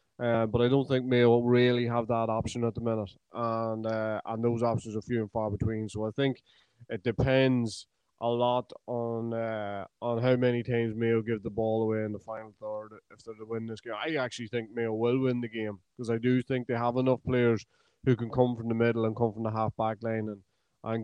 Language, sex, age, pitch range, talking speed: English, male, 20-39, 110-120 Hz, 235 wpm